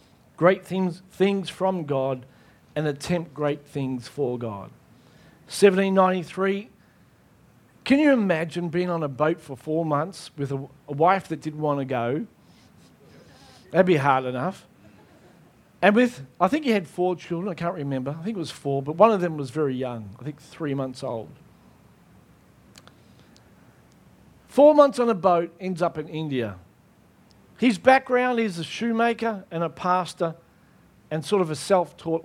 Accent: Australian